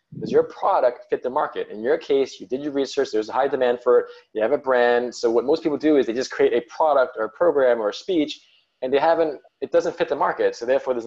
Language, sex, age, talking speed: English, male, 20-39, 275 wpm